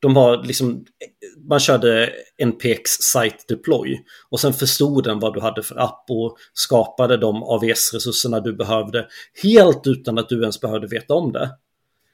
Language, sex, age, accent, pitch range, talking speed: Swedish, male, 30-49, native, 115-145 Hz, 160 wpm